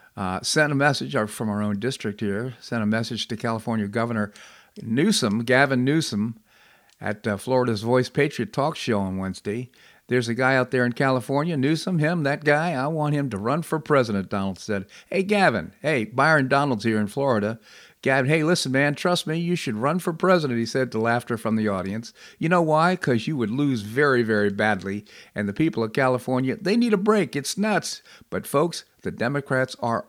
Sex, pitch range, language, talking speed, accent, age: male, 110-145 Hz, English, 195 wpm, American, 50-69